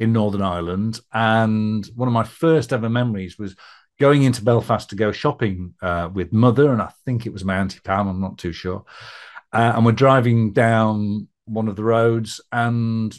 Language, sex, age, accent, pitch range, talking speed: English, male, 50-69, British, 105-130 Hz, 190 wpm